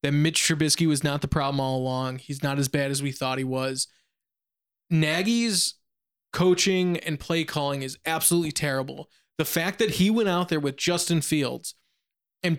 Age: 20-39